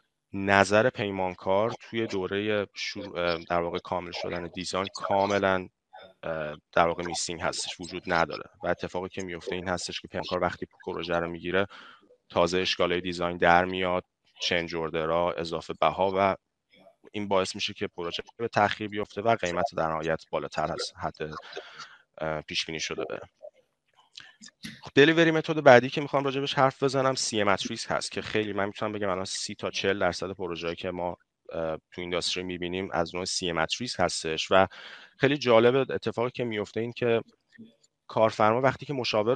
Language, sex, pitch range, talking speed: Persian, male, 90-115 Hz, 155 wpm